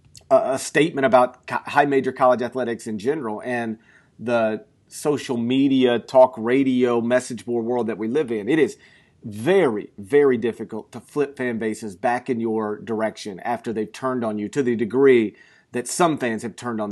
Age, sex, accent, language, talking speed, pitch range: 40-59, male, American, English, 175 wpm, 115-145 Hz